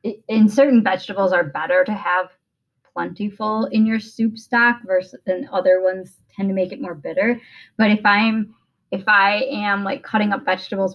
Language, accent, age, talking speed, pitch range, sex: English, American, 10-29, 180 wpm, 190-245 Hz, female